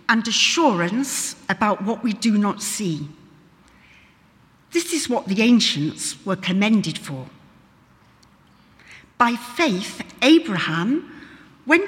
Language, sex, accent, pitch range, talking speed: English, female, British, 190-265 Hz, 100 wpm